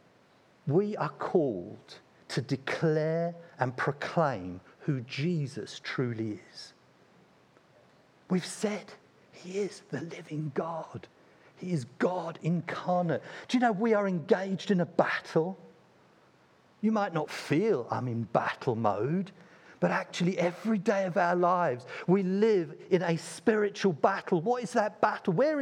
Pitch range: 160-205 Hz